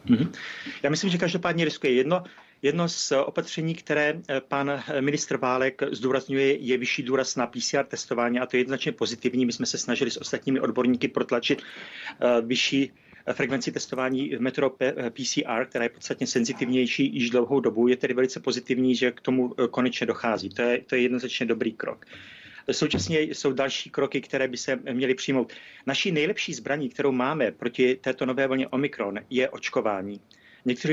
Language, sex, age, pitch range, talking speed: Czech, male, 30-49, 125-140 Hz, 165 wpm